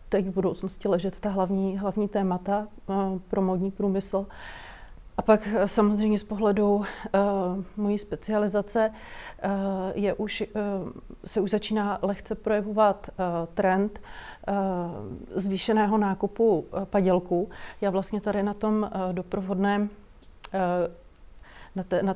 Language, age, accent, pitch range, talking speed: Czech, 30-49, native, 190-205 Hz, 125 wpm